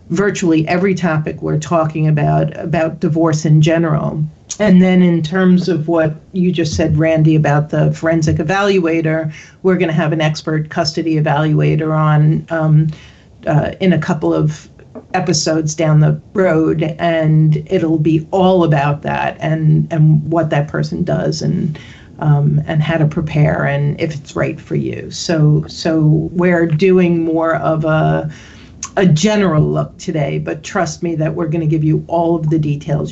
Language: English